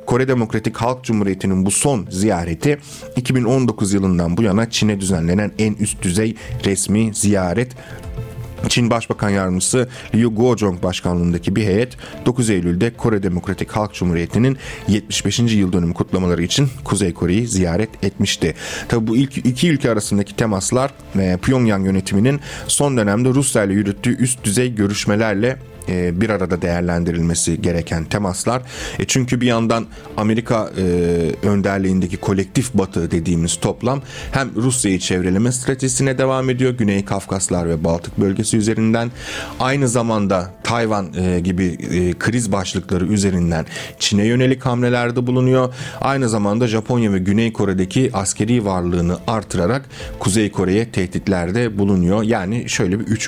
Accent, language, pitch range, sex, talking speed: native, Turkish, 95-120 Hz, male, 125 wpm